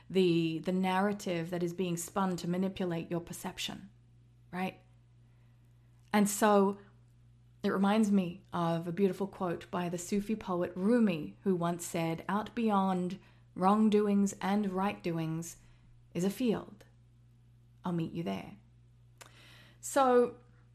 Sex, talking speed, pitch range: female, 120 wpm, 130-205 Hz